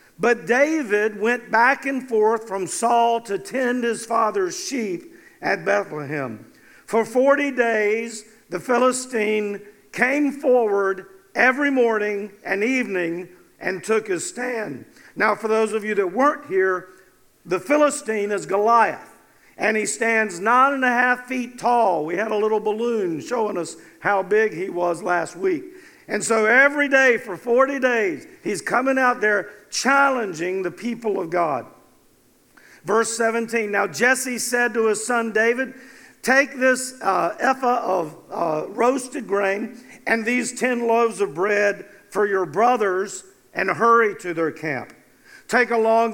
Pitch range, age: 200-250 Hz, 50-69